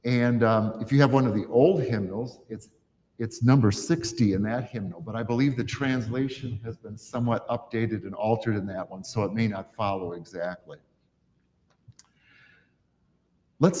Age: 50-69